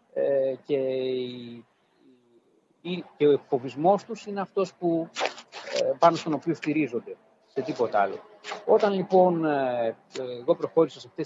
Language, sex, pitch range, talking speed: Greek, male, 115-180 Hz, 105 wpm